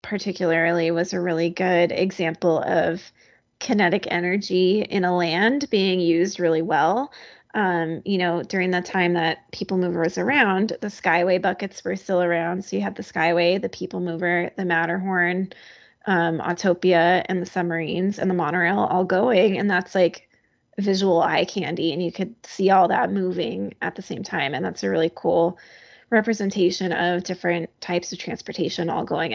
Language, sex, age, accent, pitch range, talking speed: English, female, 20-39, American, 170-195 Hz, 170 wpm